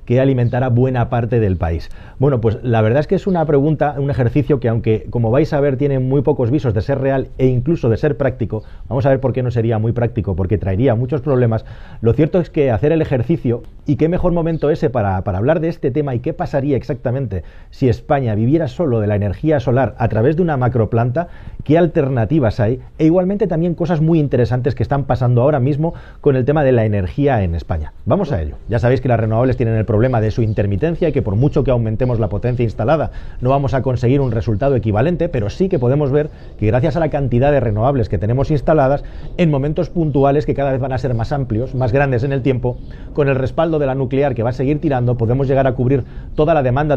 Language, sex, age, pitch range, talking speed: Spanish, male, 40-59, 115-150 Hz, 235 wpm